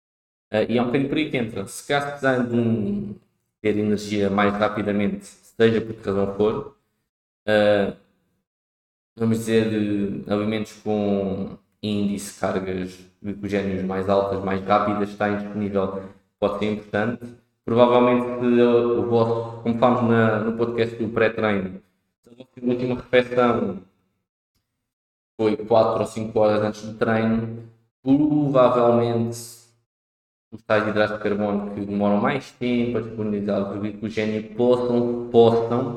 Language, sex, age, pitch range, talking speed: Portuguese, male, 20-39, 100-115 Hz, 130 wpm